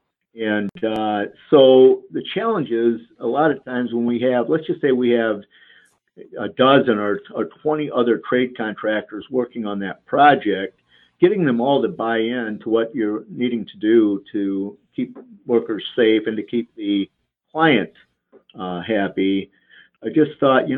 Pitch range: 105-135 Hz